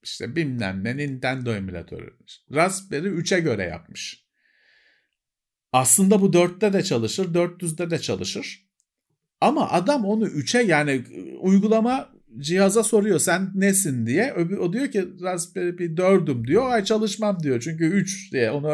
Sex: male